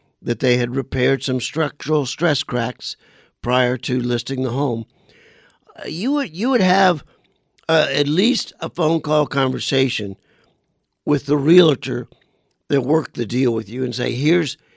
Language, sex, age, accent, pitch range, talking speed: English, male, 50-69, American, 125-155 Hz, 150 wpm